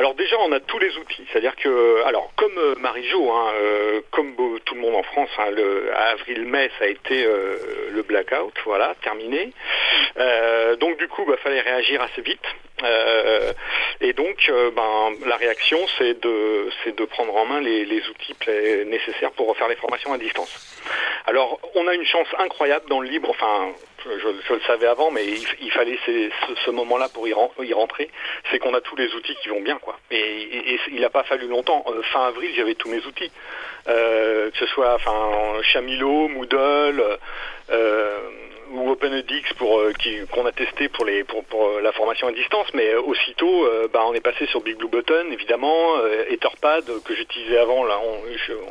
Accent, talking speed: French, 205 wpm